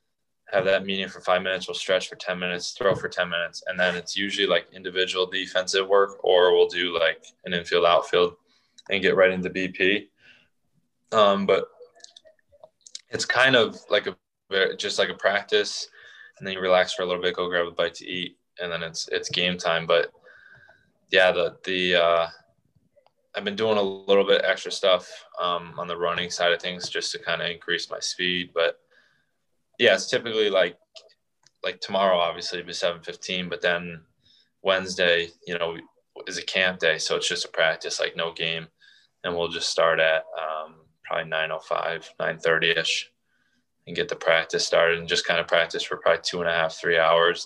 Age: 20-39